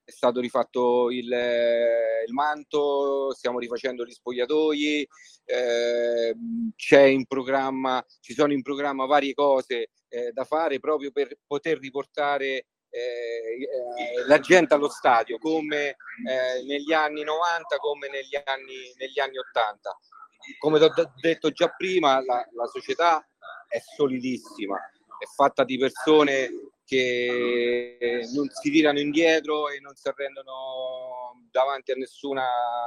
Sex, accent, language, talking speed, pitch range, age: male, native, Italian, 130 wpm, 130-195 Hz, 40-59